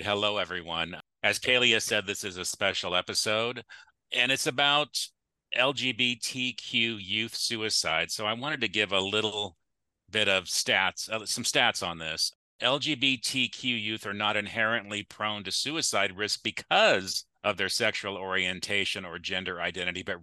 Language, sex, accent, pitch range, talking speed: English, male, American, 95-115 Hz, 140 wpm